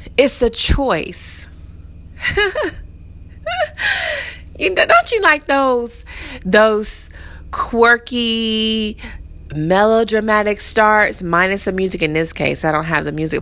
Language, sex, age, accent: English, female, 20-39, American